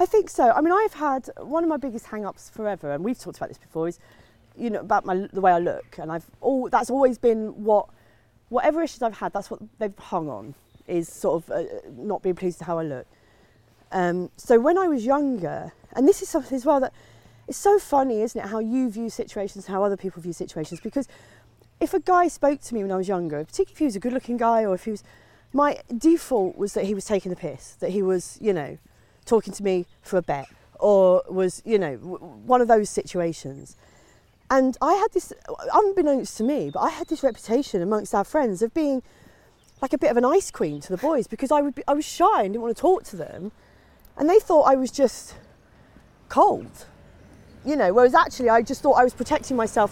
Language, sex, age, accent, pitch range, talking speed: English, female, 40-59, British, 190-280 Hz, 230 wpm